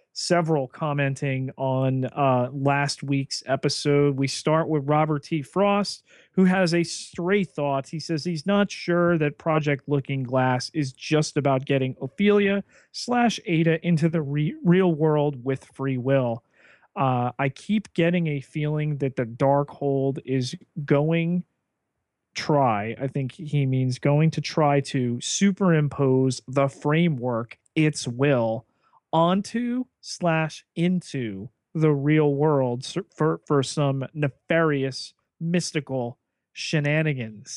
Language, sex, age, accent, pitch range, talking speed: English, male, 40-59, American, 135-170 Hz, 130 wpm